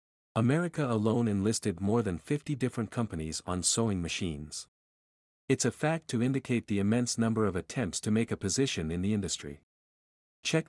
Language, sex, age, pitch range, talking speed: English, male, 50-69, 85-125 Hz, 165 wpm